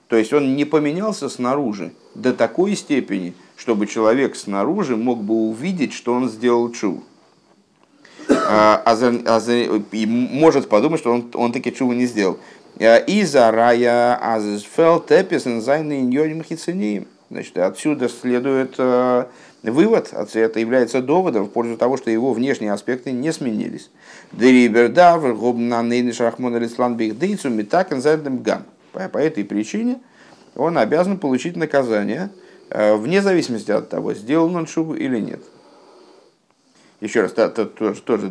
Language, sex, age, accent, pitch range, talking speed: Russian, male, 50-69, native, 110-140 Hz, 105 wpm